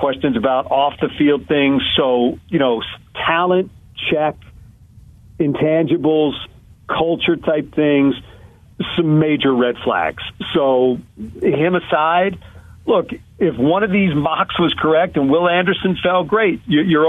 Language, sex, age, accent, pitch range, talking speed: English, male, 50-69, American, 125-165 Hz, 115 wpm